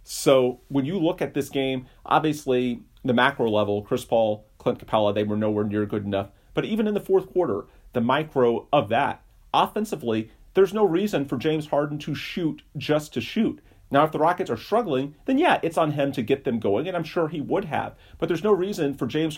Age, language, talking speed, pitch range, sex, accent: 40-59, English, 215 wpm, 120-155 Hz, male, American